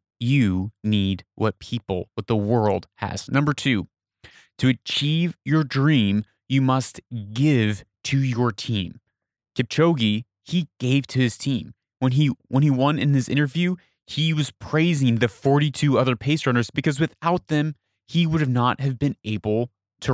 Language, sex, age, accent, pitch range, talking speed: English, male, 30-49, American, 110-145 Hz, 160 wpm